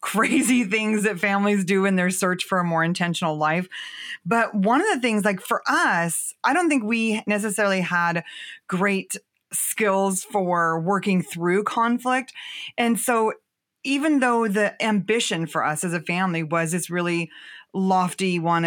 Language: English